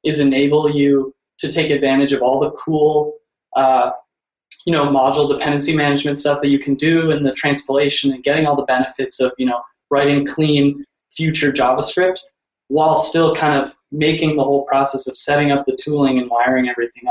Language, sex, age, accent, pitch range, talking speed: English, male, 20-39, American, 135-155 Hz, 180 wpm